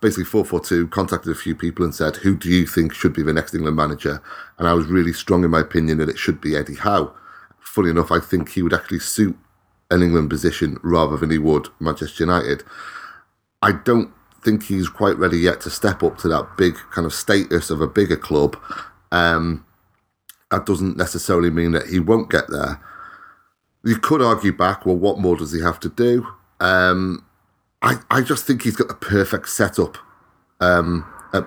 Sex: male